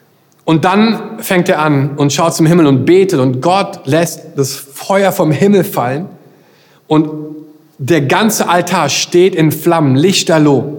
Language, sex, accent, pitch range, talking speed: German, male, German, 160-195 Hz, 150 wpm